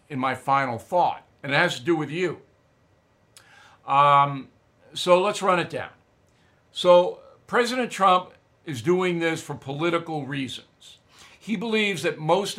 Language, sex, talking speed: English, male, 145 wpm